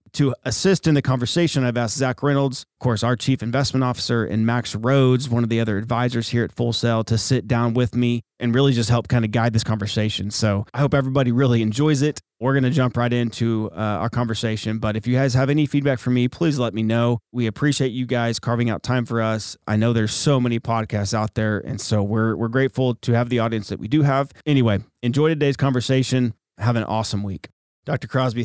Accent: American